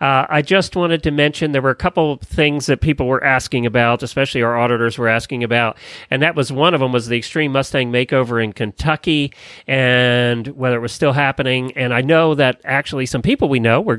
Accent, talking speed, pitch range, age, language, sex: American, 225 wpm, 125-165 Hz, 40-59, English, male